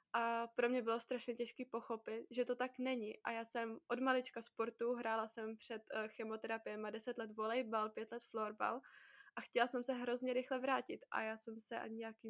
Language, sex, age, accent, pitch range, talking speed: Czech, female, 20-39, native, 225-245 Hz, 190 wpm